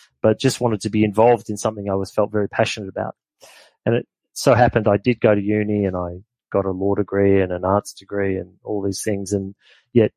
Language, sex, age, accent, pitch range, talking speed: English, male, 30-49, Australian, 100-110 Hz, 230 wpm